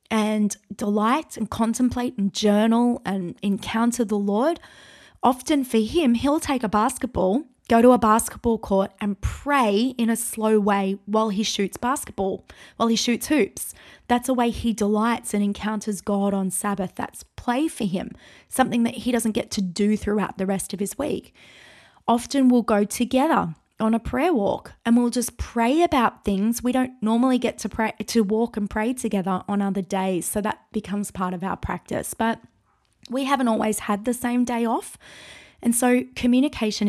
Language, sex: English, female